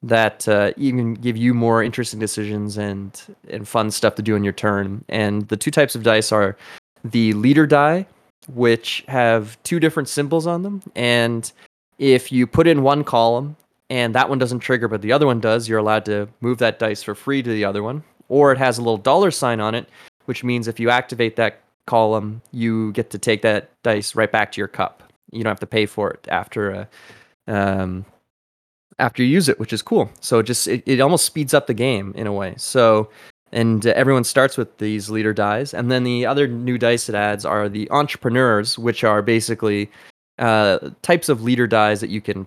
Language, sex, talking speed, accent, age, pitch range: English, male, 210 wpm, American, 20-39, 105-135 Hz